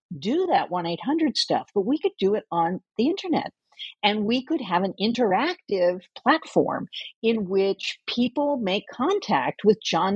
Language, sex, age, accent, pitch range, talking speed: English, female, 50-69, American, 185-270 Hz, 155 wpm